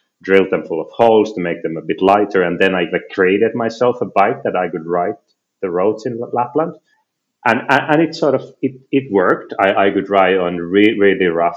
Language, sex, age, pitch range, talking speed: English, male, 30-49, 90-130 Hz, 230 wpm